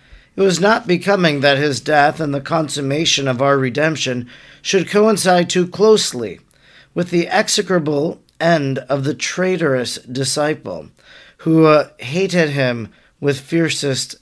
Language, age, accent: English, 40-59, American